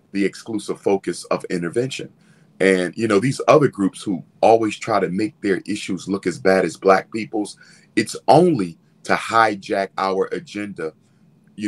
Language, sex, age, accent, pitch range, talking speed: English, male, 40-59, American, 95-150 Hz, 155 wpm